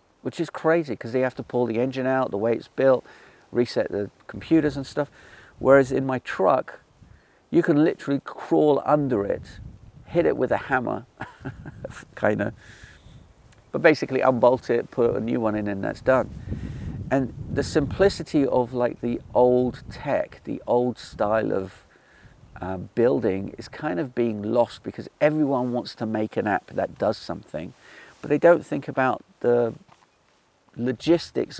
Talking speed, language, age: 160 wpm, English, 50-69